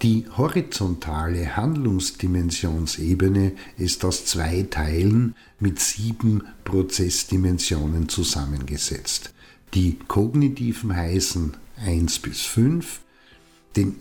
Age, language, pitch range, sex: 50-69, German, 80-110 Hz, male